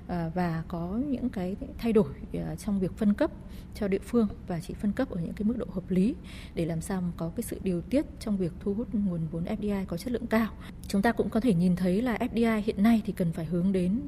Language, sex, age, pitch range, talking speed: Vietnamese, female, 20-39, 175-220 Hz, 250 wpm